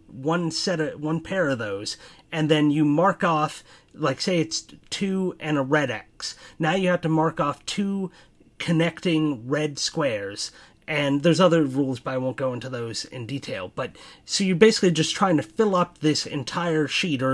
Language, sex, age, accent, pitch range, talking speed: English, male, 30-49, American, 140-175 Hz, 190 wpm